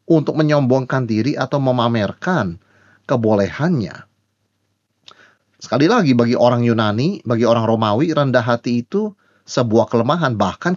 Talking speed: 110 wpm